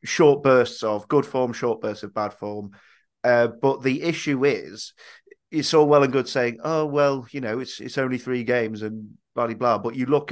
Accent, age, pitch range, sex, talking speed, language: British, 30-49, 120-150 Hz, male, 215 wpm, English